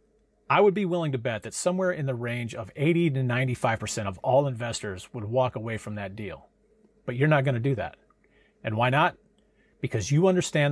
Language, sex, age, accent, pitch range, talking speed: English, male, 40-59, American, 115-150 Hz, 205 wpm